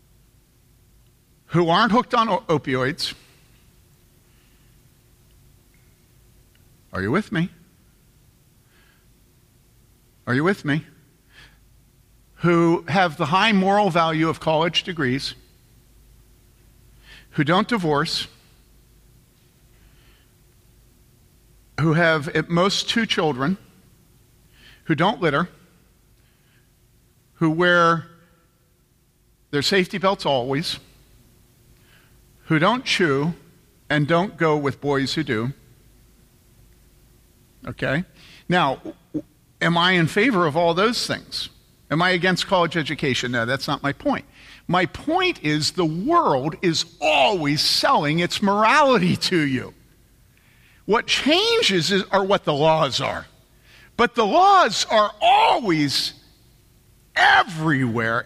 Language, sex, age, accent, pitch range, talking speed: English, male, 50-69, American, 125-180 Hz, 100 wpm